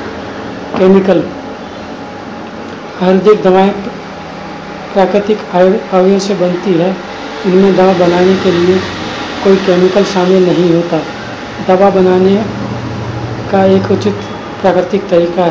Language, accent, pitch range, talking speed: Hindi, native, 175-190 Hz, 100 wpm